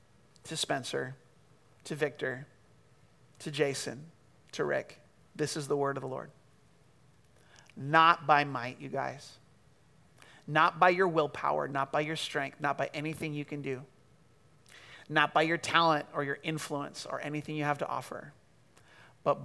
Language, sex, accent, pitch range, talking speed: English, male, American, 140-160 Hz, 150 wpm